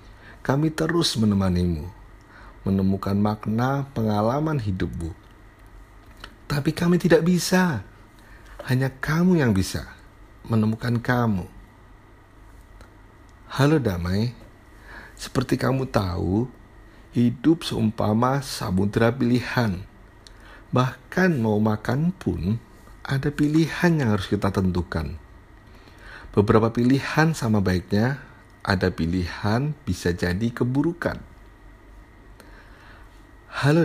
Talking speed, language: 80 wpm, Indonesian